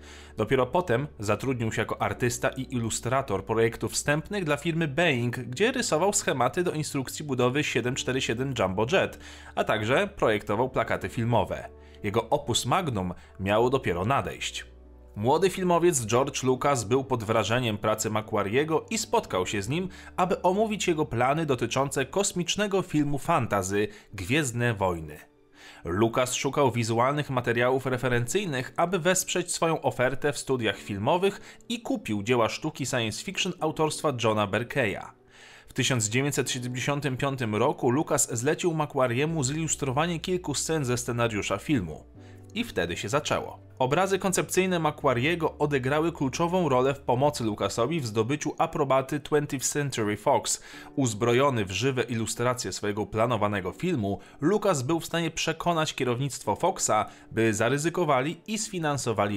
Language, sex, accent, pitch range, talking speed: Polish, male, native, 110-155 Hz, 130 wpm